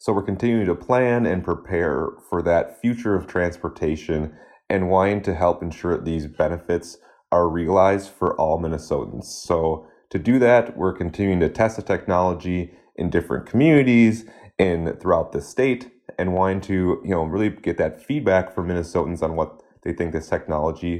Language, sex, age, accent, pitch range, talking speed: English, male, 30-49, American, 85-100 Hz, 165 wpm